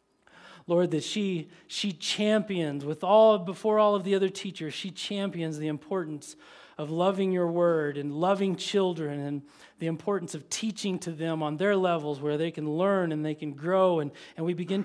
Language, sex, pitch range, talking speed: English, male, 150-180 Hz, 185 wpm